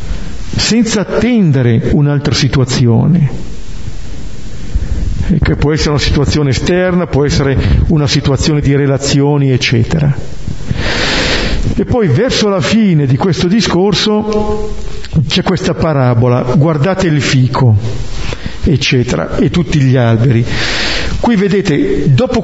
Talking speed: 105 wpm